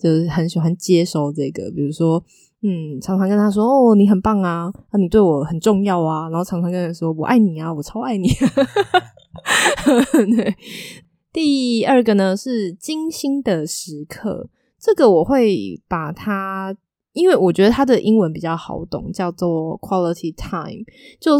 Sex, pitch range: female, 165-215 Hz